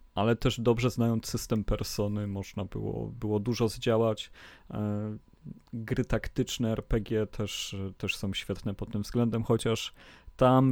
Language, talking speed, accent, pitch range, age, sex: Polish, 130 wpm, native, 105-125 Hz, 30-49, male